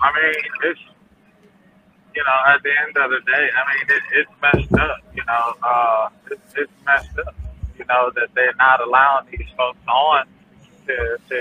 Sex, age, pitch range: male, 20-39, 135-160 Hz